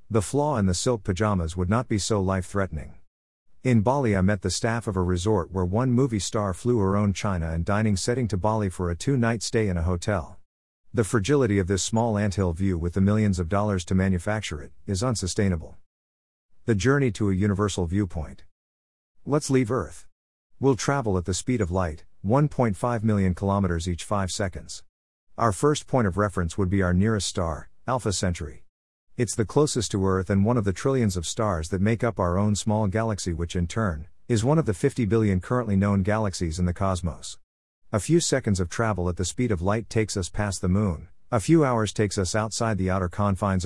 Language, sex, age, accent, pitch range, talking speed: English, male, 50-69, American, 90-115 Hz, 205 wpm